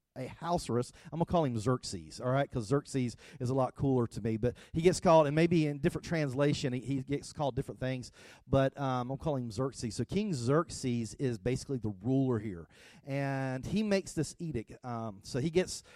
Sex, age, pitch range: male, 40-59, 125-155 Hz